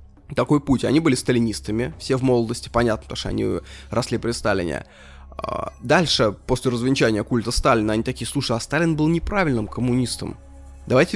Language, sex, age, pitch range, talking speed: Russian, male, 20-39, 100-130 Hz, 155 wpm